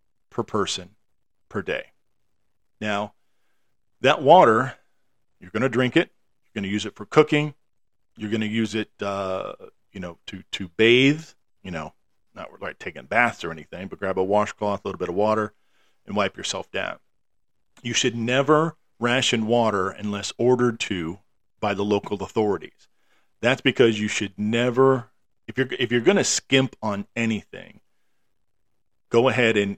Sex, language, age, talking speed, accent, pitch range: male, English, 40-59, 160 wpm, American, 100-120 Hz